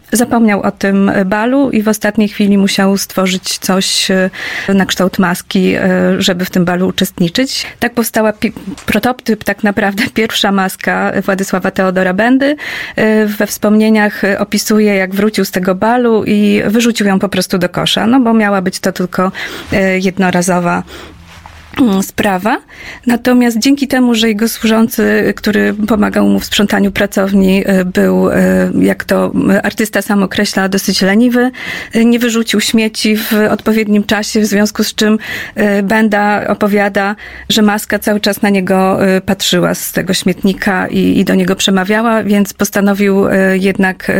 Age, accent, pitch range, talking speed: 30-49, native, 190-220 Hz, 140 wpm